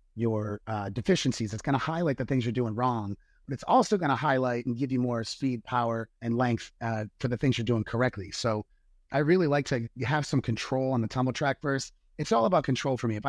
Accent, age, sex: American, 30-49, male